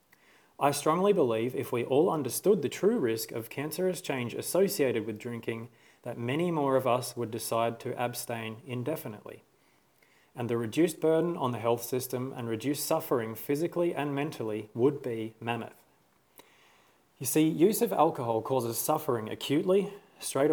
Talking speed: 150 wpm